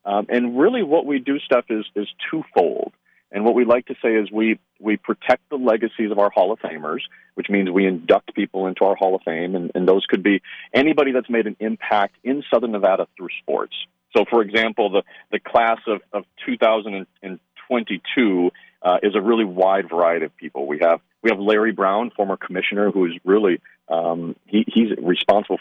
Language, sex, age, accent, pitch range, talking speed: English, male, 40-59, American, 95-115 Hz, 195 wpm